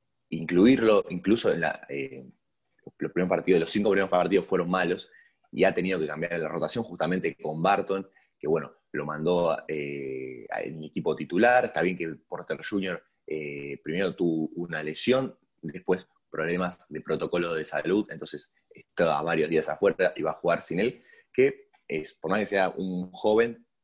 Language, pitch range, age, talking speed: Spanish, 80-115 Hz, 20-39, 170 wpm